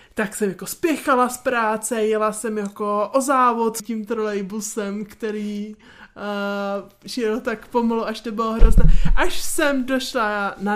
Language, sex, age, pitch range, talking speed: Czech, male, 20-39, 200-240 Hz, 150 wpm